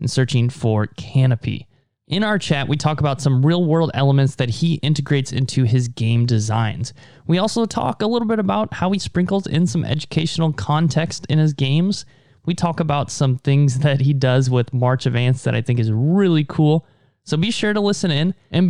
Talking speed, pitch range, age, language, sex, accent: 195 wpm, 130-175 Hz, 20-39, English, male, American